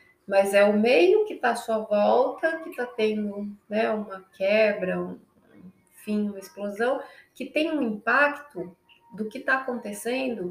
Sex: female